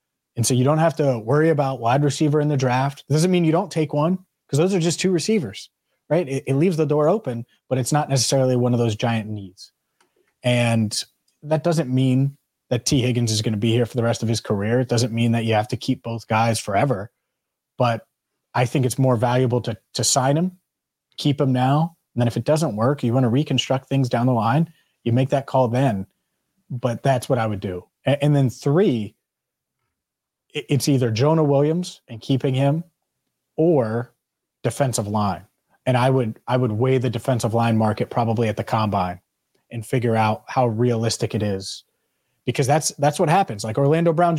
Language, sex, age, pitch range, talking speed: English, male, 30-49, 115-145 Hz, 205 wpm